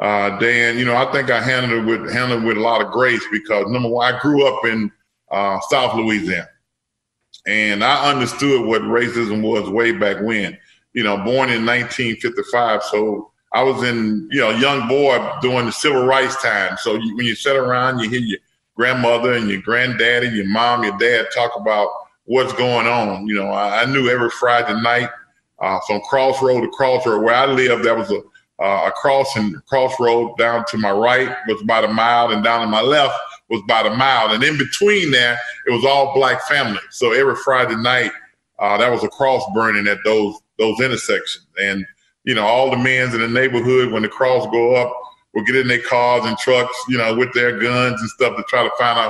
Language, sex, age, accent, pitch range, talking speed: English, male, 40-59, American, 115-130 Hz, 210 wpm